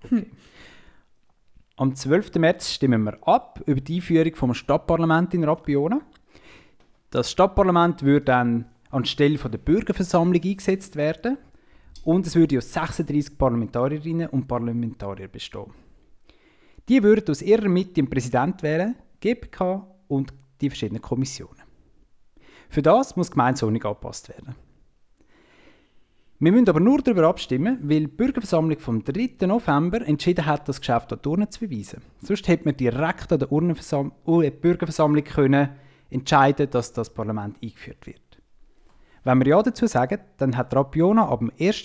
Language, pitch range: German, 130-175 Hz